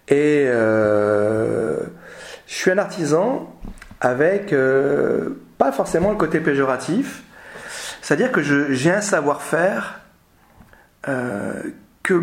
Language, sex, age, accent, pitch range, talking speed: French, male, 40-59, French, 110-165 Hz, 105 wpm